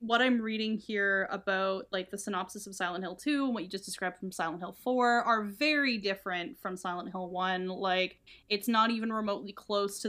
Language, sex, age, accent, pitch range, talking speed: English, female, 10-29, American, 190-220 Hz, 210 wpm